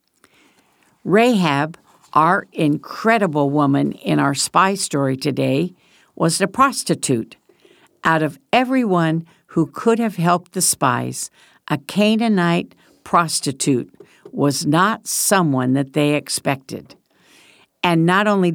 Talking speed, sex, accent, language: 105 wpm, female, American, English